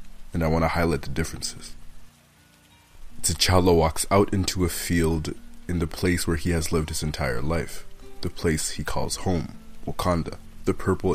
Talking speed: 165 wpm